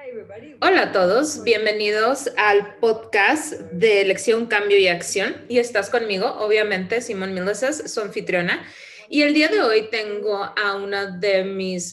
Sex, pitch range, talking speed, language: female, 190-235 Hz, 145 wpm, Spanish